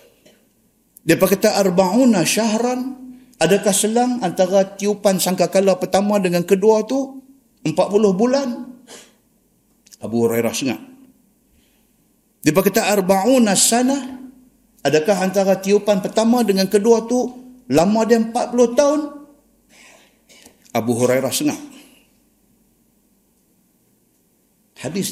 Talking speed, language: 90 wpm, Malay